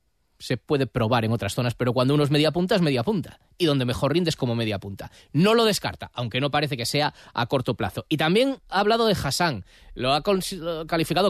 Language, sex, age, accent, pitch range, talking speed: Spanish, male, 20-39, Spanish, 125-185 Hz, 230 wpm